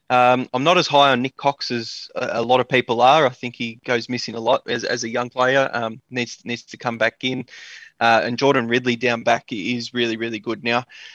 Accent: Australian